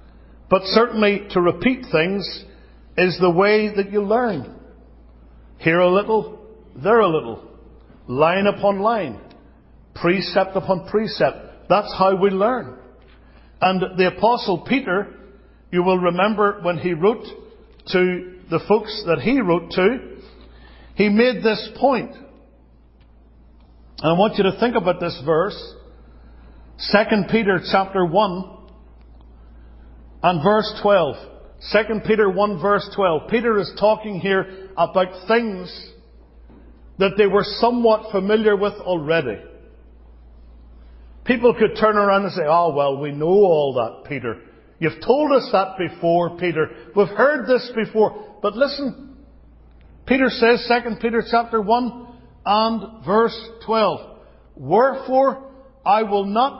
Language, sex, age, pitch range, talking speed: English, male, 50-69, 160-220 Hz, 125 wpm